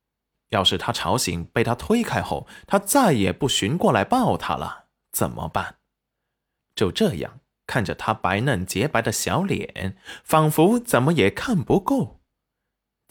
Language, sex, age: Chinese, male, 20-39